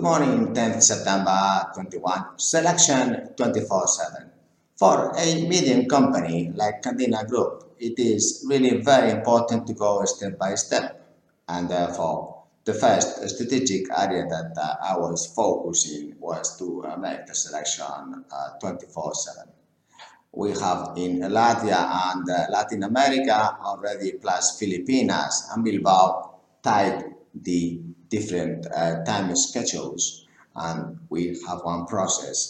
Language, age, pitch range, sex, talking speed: English, 50-69, 85-115 Hz, male, 125 wpm